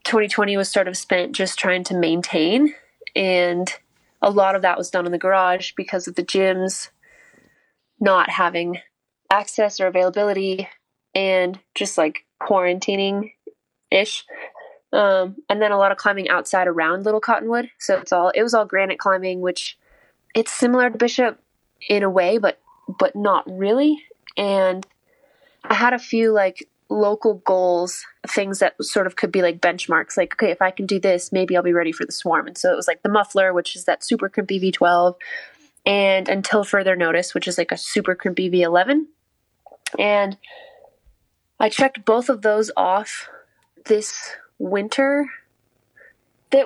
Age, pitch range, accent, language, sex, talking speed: 20-39, 180-225 Hz, American, English, female, 165 wpm